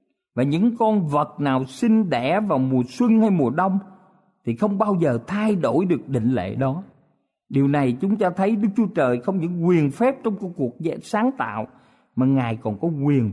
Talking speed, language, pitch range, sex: 200 wpm, Vietnamese, 125-195 Hz, male